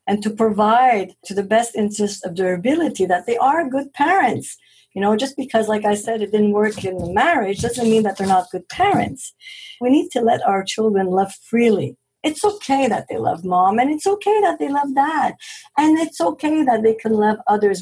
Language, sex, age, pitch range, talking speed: English, female, 50-69, 195-250 Hz, 215 wpm